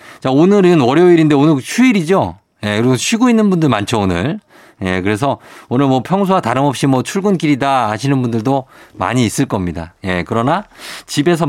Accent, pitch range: native, 120-175 Hz